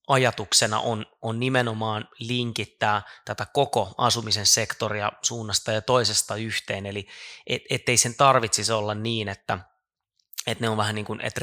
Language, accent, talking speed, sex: Finnish, native, 145 wpm, male